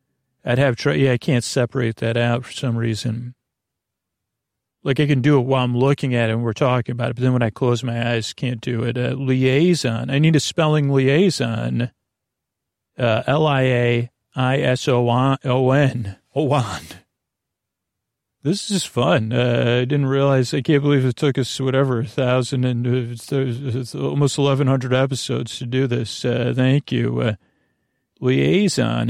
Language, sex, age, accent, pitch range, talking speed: English, male, 40-59, American, 120-135 Hz, 155 wpm